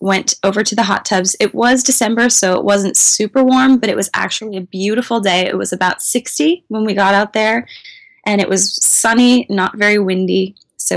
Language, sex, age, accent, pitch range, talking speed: English, female, 20-39, American, 185-215 Hz, 210 wpm